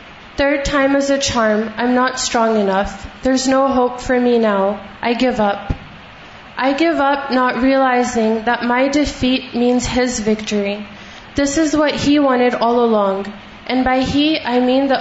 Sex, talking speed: female, 170 wpm